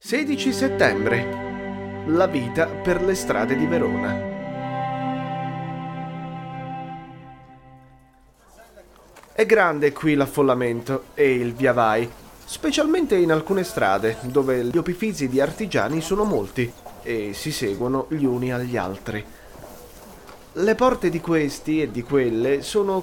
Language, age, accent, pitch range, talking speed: Italian, 30-49, native, 120-190 Hz, 110 wpm